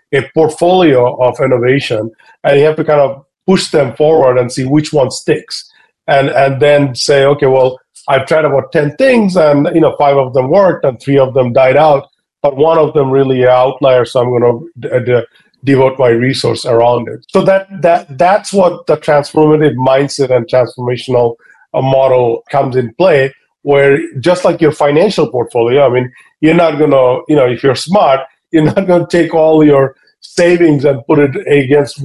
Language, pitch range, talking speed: English, 130-155 Hz, 190 wpm